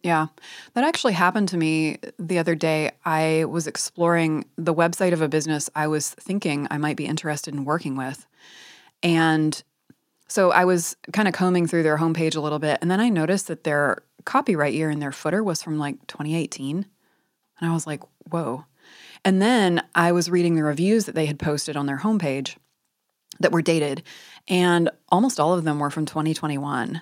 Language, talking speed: English, 190 wpm